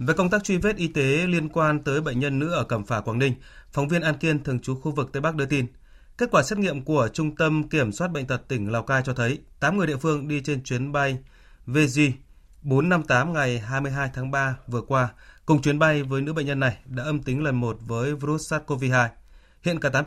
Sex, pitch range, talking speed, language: male, 125-155 Hz, 240 wpm, Vietnamese